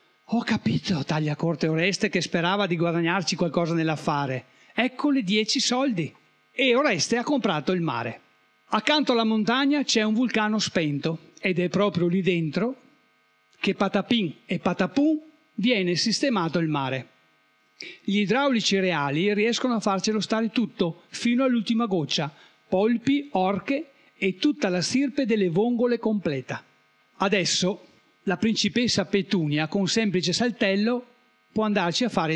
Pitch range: 175-240 Hz